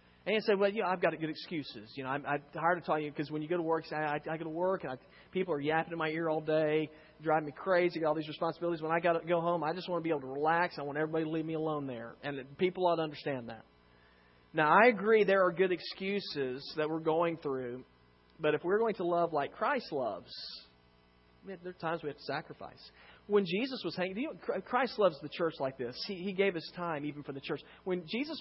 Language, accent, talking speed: English, American, 265 wpm